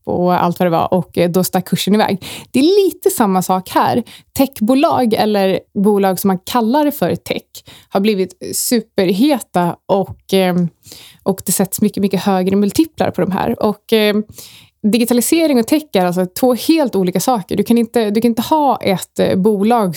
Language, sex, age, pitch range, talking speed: Swedish, female, 20-39, 185-235 Hz, 175 wpm